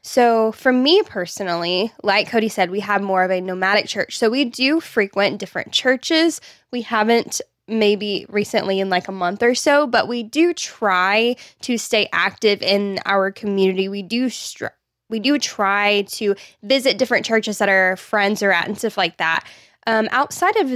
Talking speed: 180 wpm